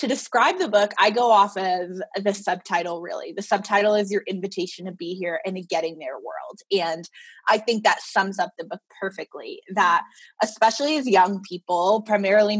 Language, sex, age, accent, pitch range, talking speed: English, female, 20-39, American, 185-230 Hz, 180 wpm